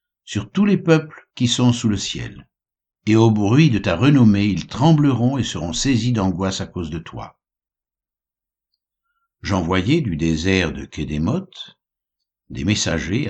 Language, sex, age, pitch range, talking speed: French, male, 60-79, 95-125 Hz, 150 wpm